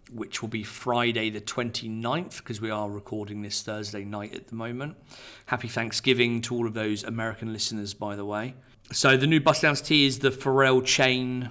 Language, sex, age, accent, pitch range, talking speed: English, male, 40-59, British, 105-125 Hz, 195 wpm